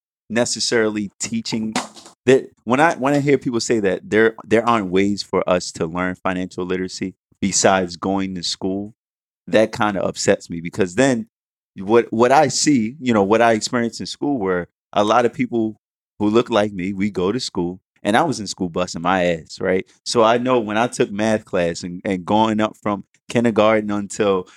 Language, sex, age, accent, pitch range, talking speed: English, male, 20-39, American, 95-120 Hz, 195 wpm